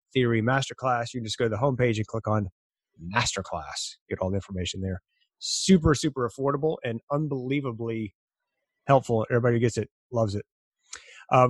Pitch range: 110-135 Hz